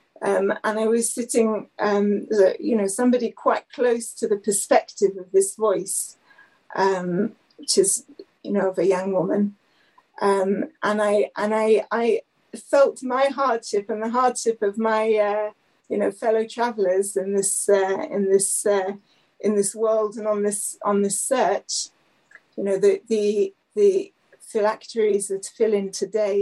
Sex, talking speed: female, 160 wpm